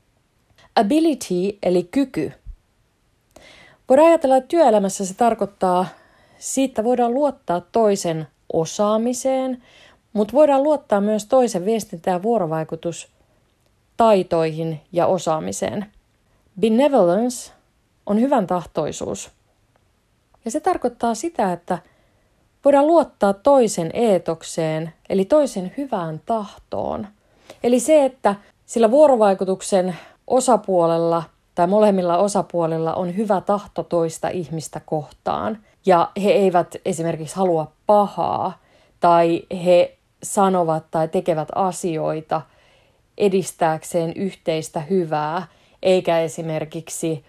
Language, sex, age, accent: Finnish, female, 30-49, native